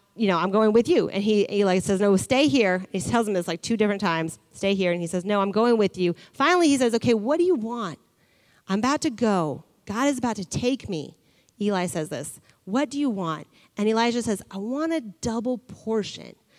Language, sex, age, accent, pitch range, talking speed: English, female, 30-49, American, 180-240 Hz, 230 wpm